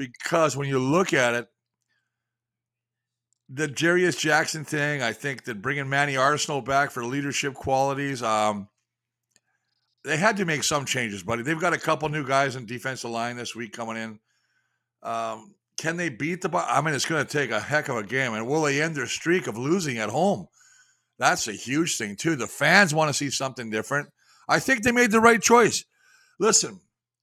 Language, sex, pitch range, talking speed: English, male, 120-160 Hz, 190 wpm